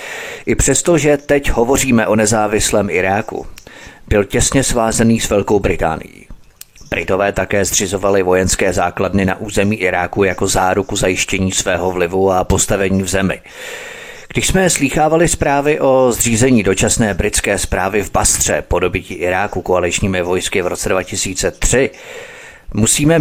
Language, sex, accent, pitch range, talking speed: Czech, male, native, 95-120 Hz, 130 wpm